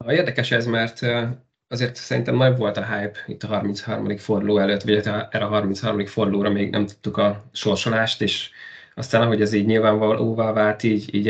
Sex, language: male, Hungarian